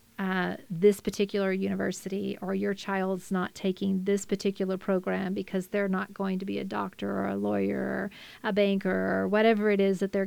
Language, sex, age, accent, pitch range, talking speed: English, female, 40-59, American, 195-230 Hz, 185 wpm